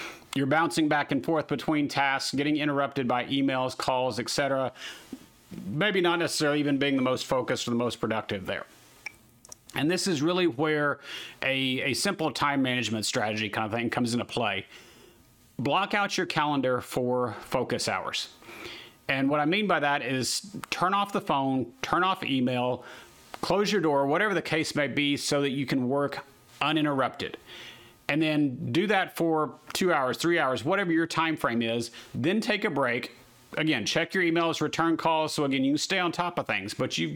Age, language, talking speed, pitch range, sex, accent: 40-59, English, 185 wpm, 130-165 Hz, male, American